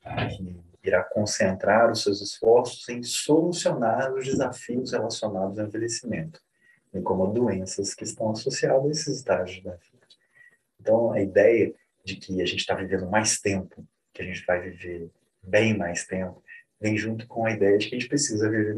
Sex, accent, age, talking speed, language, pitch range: male, Brazilian, 30-49, 175 wpm, Portuguese, 95-125 Hz